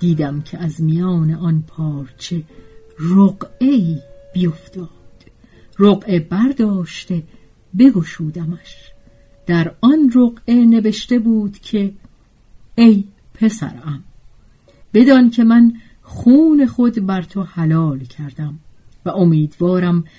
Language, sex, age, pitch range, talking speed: Persian, female, 50-69, 155-230 Hz, 90 wpm